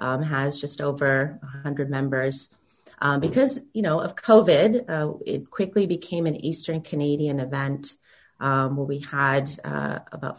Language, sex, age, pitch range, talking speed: English, female, 30-49, 135-155 Hz, 150 wpm